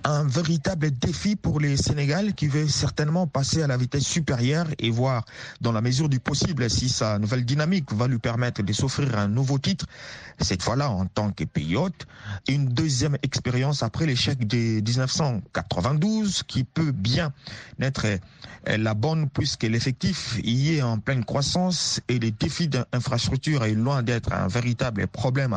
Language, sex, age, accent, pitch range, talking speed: French, male, 50-69, French, 115-150 Hz, 165 wpm